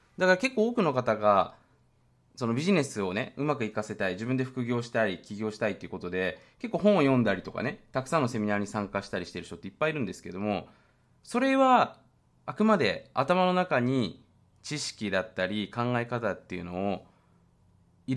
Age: 20-39